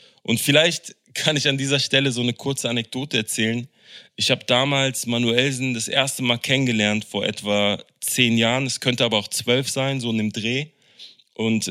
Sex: male